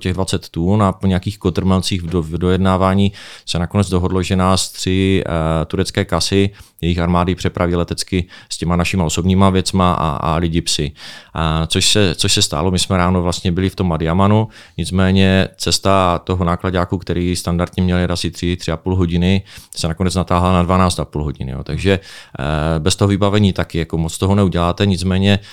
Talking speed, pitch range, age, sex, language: 180 wpm, 85-95 Hz, 30-49, male, Czech